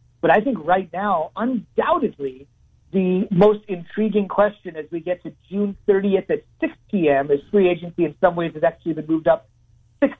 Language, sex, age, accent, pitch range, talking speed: English, male, 40-59, American, 160-195 Hz, 180 wpm